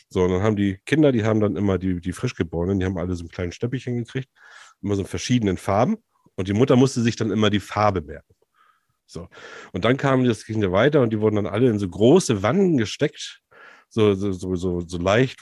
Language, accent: German, German